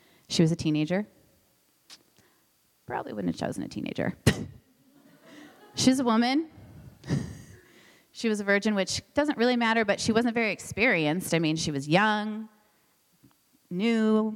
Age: 30-49